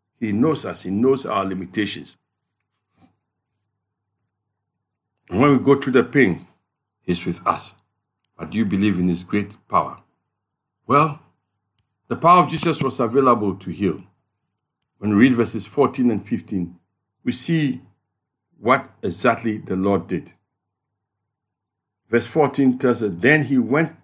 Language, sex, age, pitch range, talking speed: English, male, 60-79, 95-130 Hz, 135 wpm